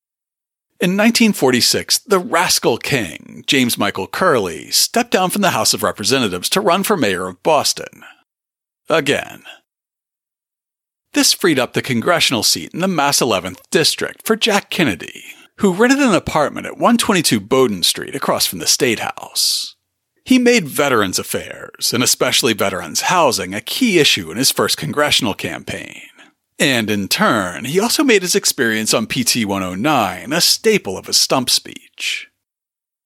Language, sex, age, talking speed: English, male, 40-59, 145 wpm